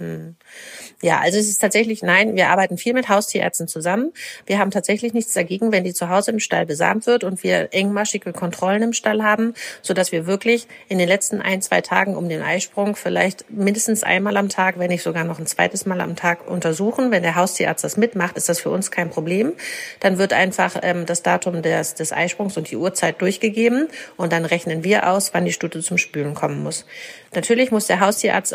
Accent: German